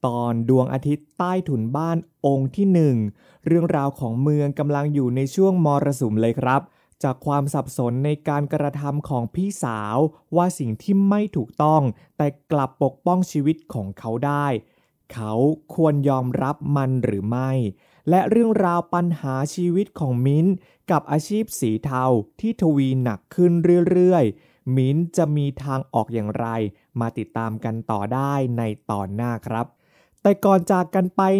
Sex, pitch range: male, 125-175 Hz